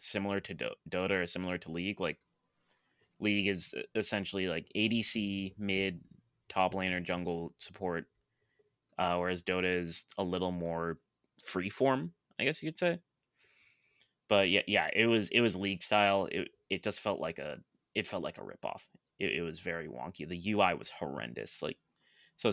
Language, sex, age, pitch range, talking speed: English, male, 20-39, 90-110 Hz, 170 wpm